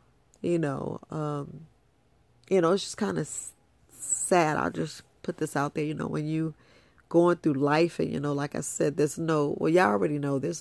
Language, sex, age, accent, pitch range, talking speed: English, female, 40-59, American, 140-160 Hz, 210 wpm